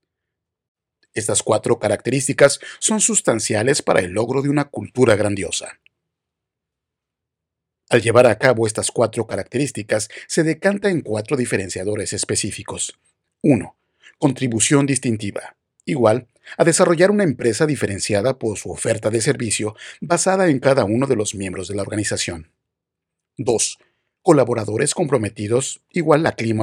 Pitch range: 105-145 Hz